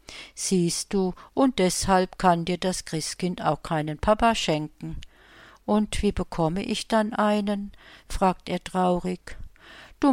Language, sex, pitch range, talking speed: German, female, 160-200 Hz, 130 wpm